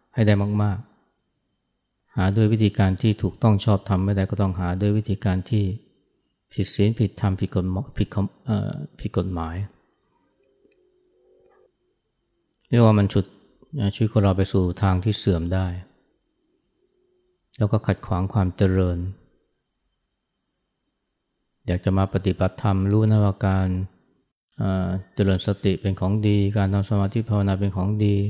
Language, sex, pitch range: Thai, male, 95-110 Hz